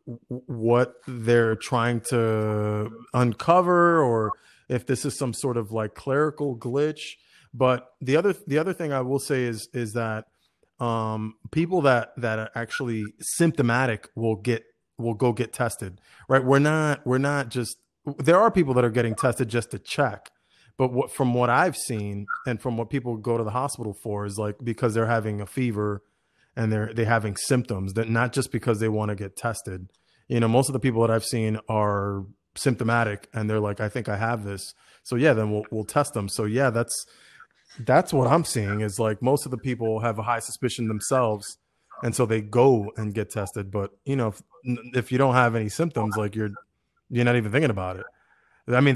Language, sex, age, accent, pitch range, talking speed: English, male, 30-49, American, 110-130 Hz, 200 wpm